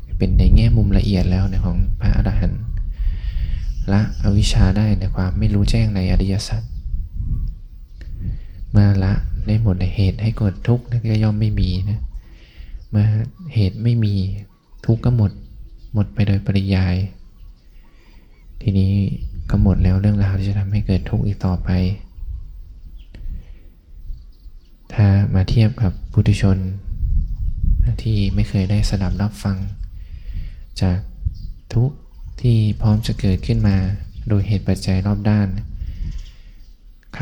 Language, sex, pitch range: Thai, male, 90-105 Hz